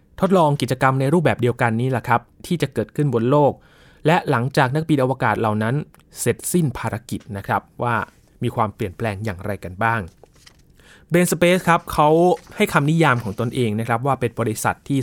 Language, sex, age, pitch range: Thai, male, 20-39, 115-150 Hz